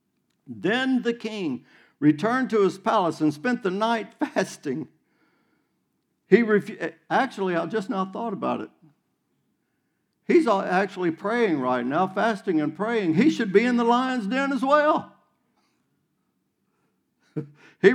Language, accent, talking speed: English, American, 130 wpm